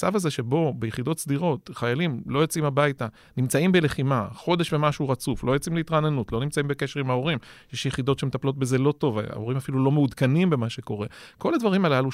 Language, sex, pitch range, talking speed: Hebrew, male, 125-170 Hz, 185 wpm